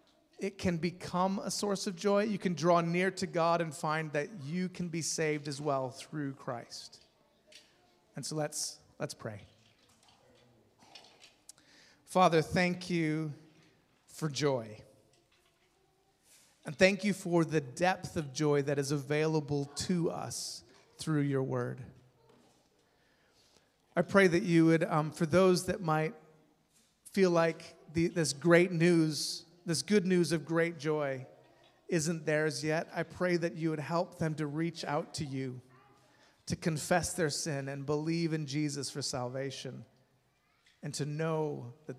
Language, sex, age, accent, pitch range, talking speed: English, male, 30-49, American, 145-175 Hz, 145 wpm